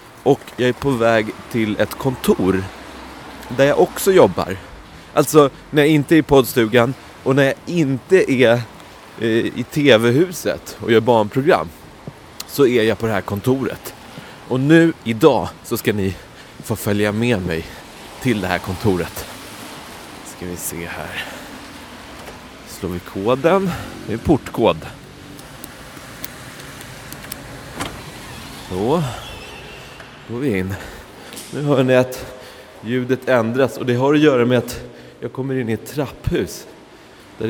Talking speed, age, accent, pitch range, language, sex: 130 wpm, 30-49, Swedish, 100-140 Hz, English, male